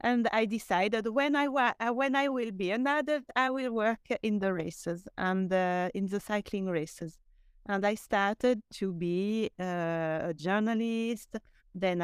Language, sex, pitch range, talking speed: English, female, 170-220 Hz, 155 wpm